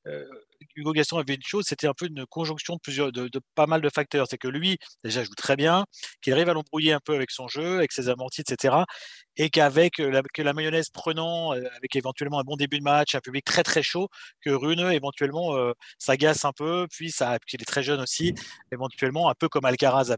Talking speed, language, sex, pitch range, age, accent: 225 wpm, French, male, 125-155 Hz, 30-49, French